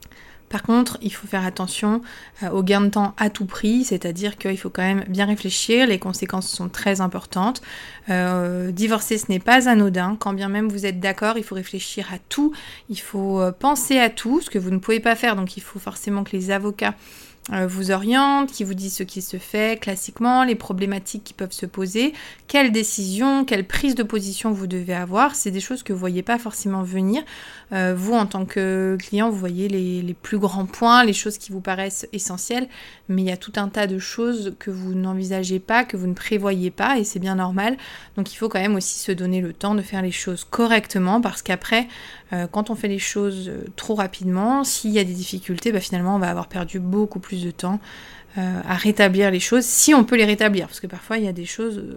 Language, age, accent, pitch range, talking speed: French, 30-49, French, 190-220 Hz, 225 wpm